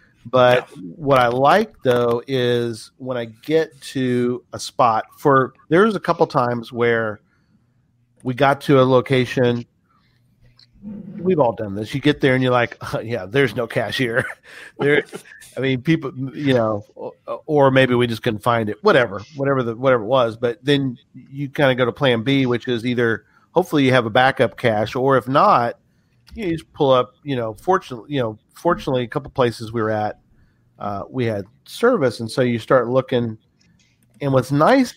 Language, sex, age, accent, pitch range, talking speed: English, male, 40-59, American, 120-145 Hz, 180 wpm